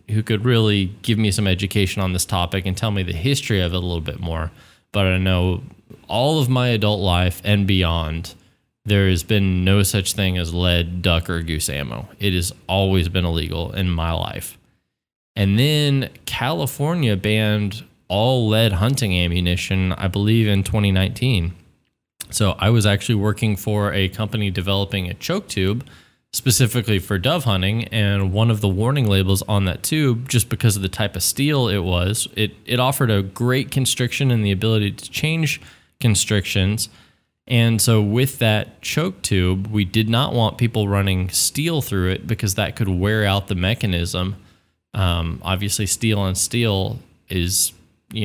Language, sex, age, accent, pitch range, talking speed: English, male, 20-39, American, 95-115 Hz, 170 wpm